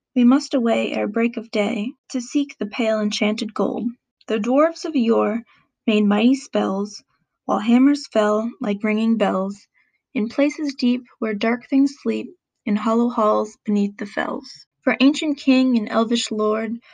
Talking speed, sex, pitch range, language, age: 160 wpm, female, 215-255 Hz, English, 20-39